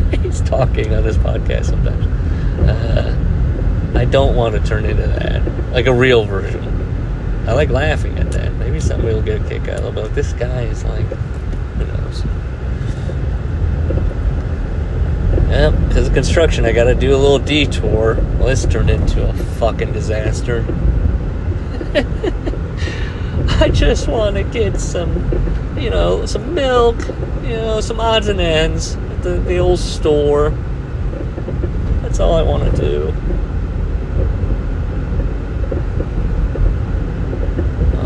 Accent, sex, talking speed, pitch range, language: American, male, 130 wpm, 85-110 Hz, English